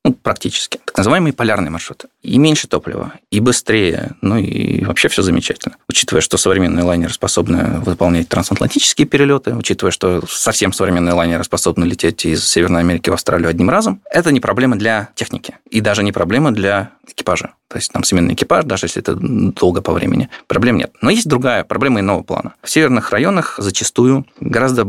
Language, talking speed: Russian, 175 wpm